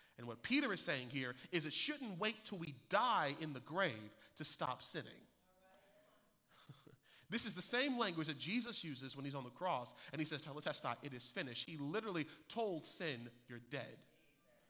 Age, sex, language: 30-49, male, English